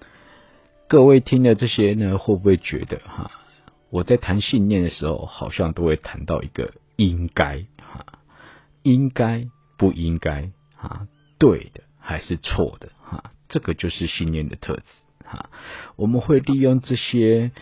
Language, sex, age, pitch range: Chinese, male, 50-69, 80-120 Hz